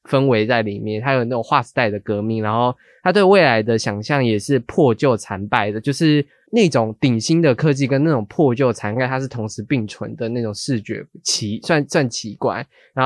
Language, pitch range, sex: Chinese, 115-150 Hz, male